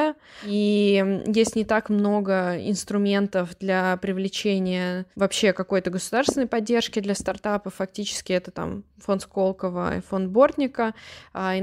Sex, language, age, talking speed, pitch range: female, Russian, 20-39, 120 wpm, 185-205 Hz